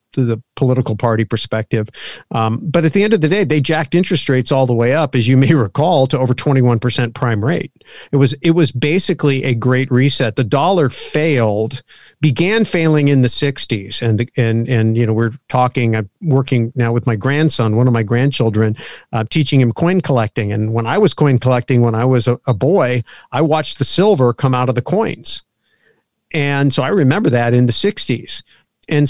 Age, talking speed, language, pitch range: 50-69, 205 wpm, English, 120-145 Hz